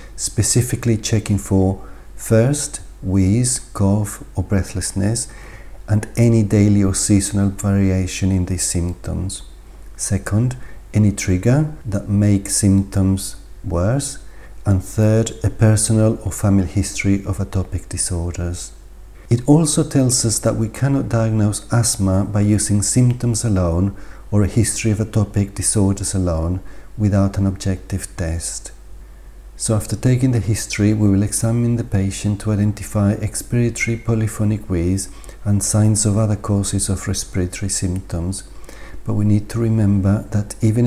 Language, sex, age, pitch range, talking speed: English, male, 50-69, 95-110 Hz, 130 wpm